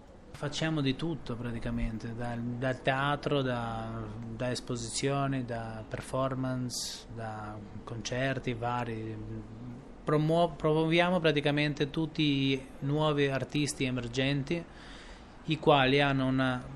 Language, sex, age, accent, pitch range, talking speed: Italian, male, 20-39, native, 120-145 Hz, 90 wpm